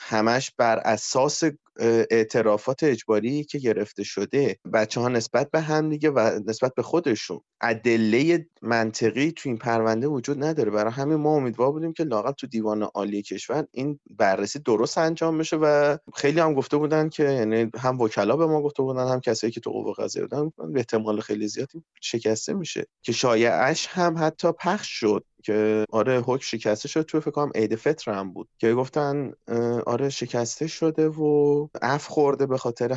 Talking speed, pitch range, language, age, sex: 170 wpm, 110-145 Hz, Persian, 30-49, male